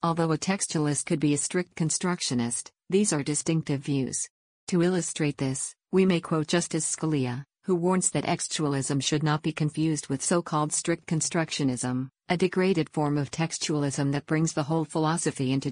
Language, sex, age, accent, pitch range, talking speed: English, female, 50-69, American, 145-170 Hz, 165 wpm